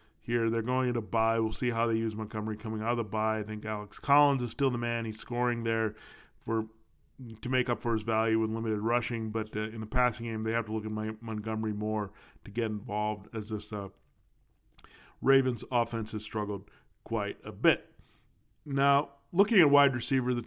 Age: 40-59